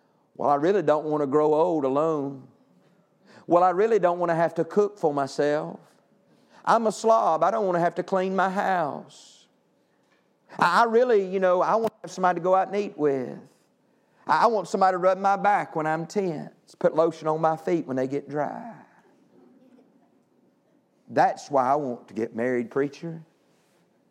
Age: 50-69